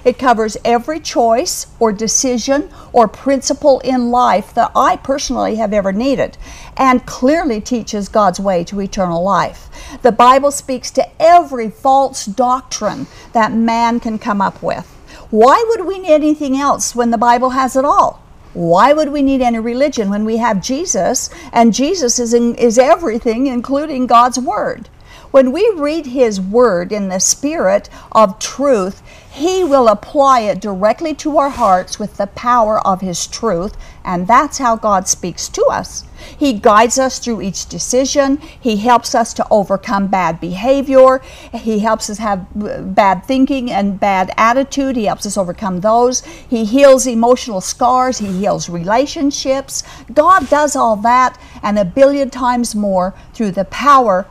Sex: female